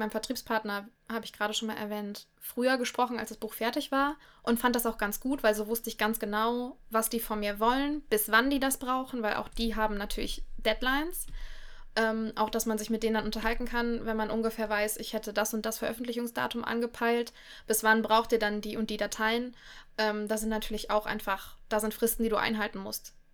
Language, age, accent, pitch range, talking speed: German, 20-39, German, 215-230 Hz, 220 wpm